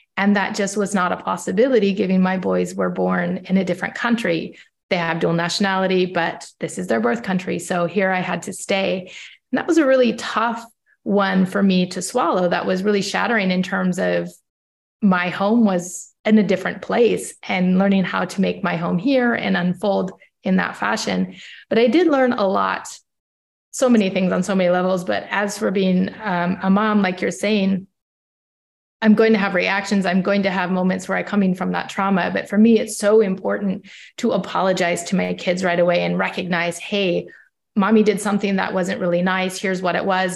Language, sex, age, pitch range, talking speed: English, female, 30-49, 180-205 Hz, 200 wpm